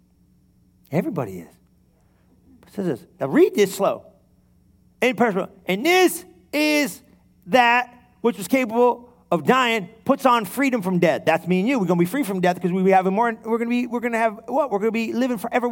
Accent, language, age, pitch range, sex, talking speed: American, English, 40-59, 220-305 Hz, male, 205 wpm